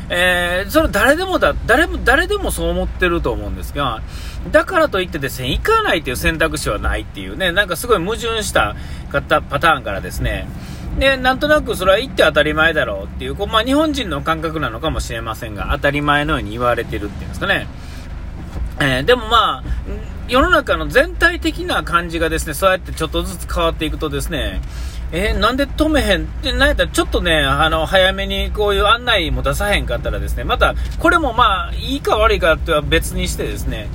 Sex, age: male, 40-59